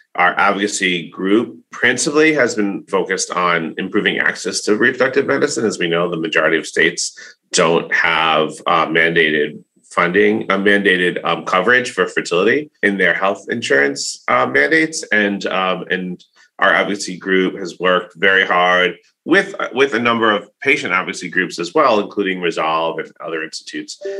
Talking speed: 155 wpm